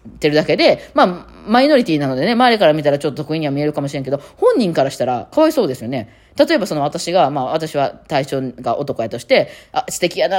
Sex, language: female, Japanese